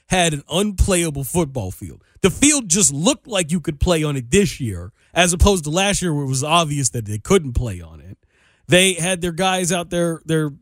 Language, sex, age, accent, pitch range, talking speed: English, male, 40-59, American, 140-185 Hz, 220 wpm